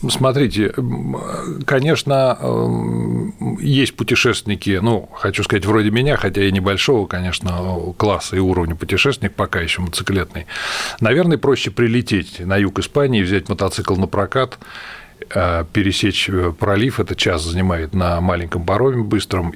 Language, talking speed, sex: Russian, 120 wpm, male